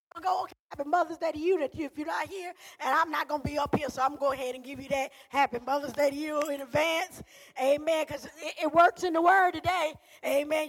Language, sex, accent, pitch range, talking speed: English, female, American, 250-340 Hz, 285 wpm